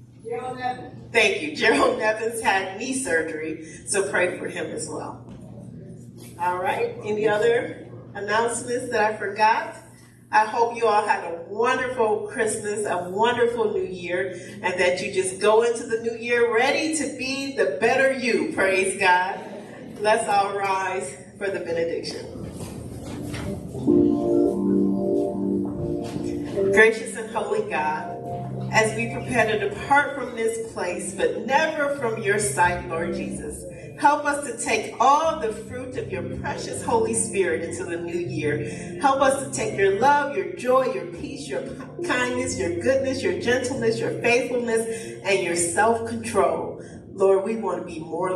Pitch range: 180-250 Hz